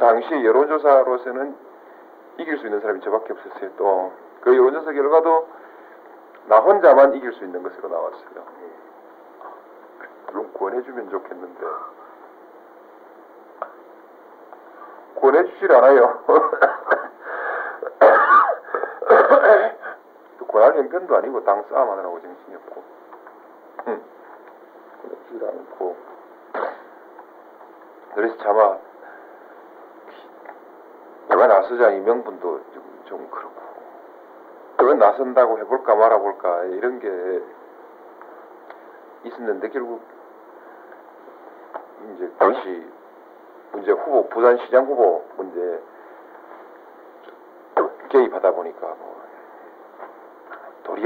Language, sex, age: Korean, male, 50-69